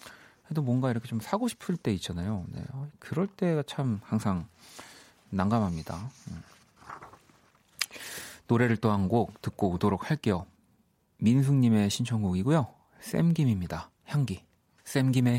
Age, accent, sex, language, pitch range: 30-49, native, male, Korean, 95-130 Hz